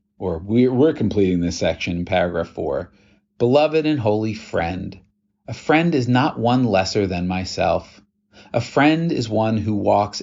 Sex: male